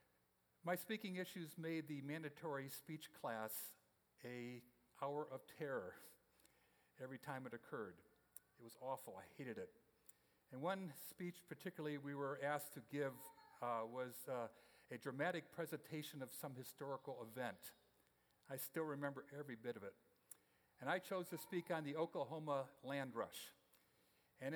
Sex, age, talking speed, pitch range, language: male, 50-69, 145 wpm, 135-160 Hz, English